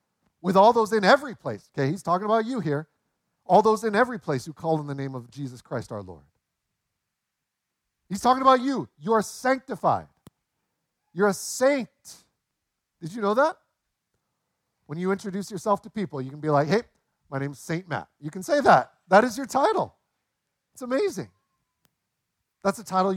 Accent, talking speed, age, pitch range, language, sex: American, 175 wpm, 40-59, 155-215 Hz, English, male